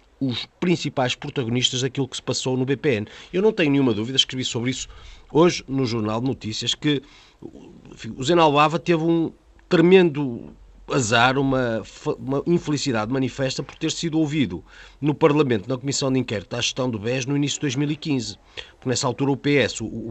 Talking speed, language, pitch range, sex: 165 wpm, Portuguese, 130-165 Hz, male